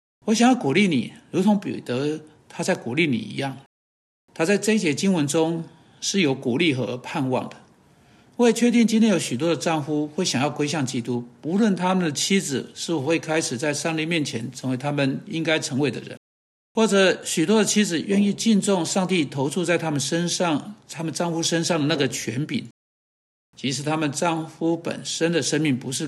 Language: Chinese